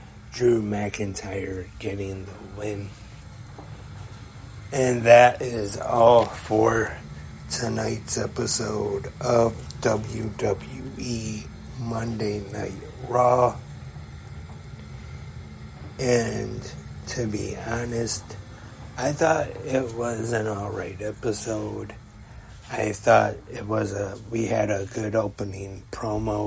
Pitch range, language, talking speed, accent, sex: 100-115 Hz, English, 90 wpm, American, male